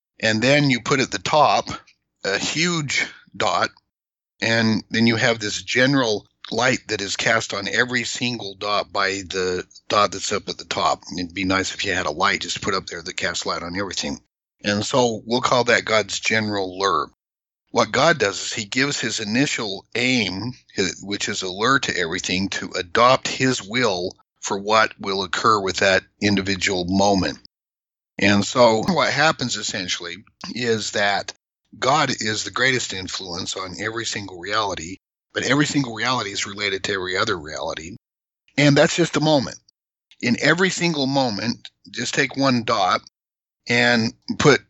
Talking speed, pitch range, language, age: 170 wpm, 100-130 Hz, English, 50-69